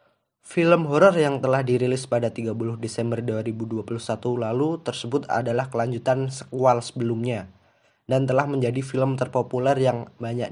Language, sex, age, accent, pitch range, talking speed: Indonesian, male, 20-39, native, 115-135 Hz, 125 wpm